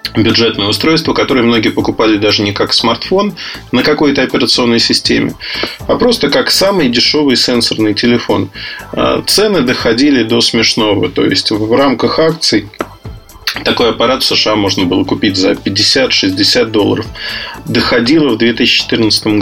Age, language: 20-39, Russian